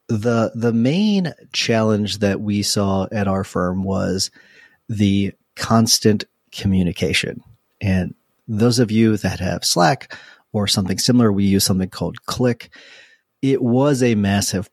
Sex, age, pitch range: male, 30-49, 100-115 Hz